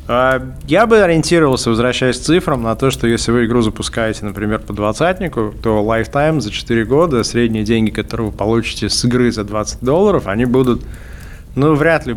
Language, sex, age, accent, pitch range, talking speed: Russian, male, 20-39, native, 105-125 Hz, 180 wpm